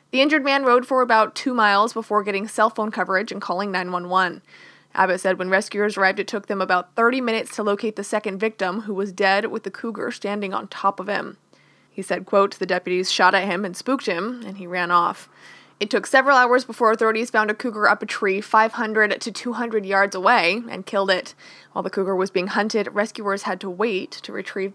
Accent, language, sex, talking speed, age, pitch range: American, English, female, 220 wpm, 20-39, 190-235 Hz